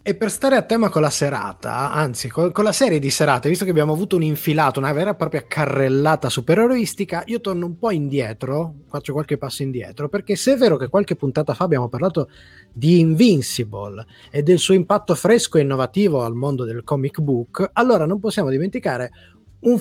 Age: 30-49